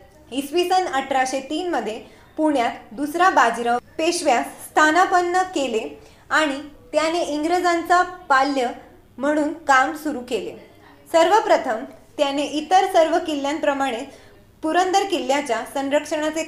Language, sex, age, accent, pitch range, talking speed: Marathi, female, 20-39, native, 260-335 Hz, 95 wpm